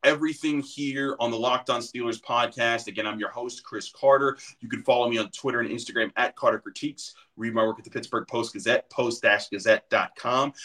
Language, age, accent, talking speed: English, 30-49, American, 185 wpm